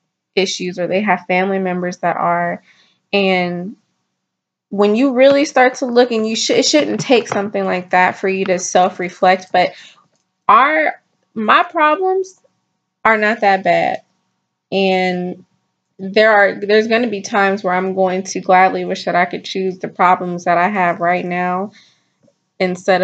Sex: female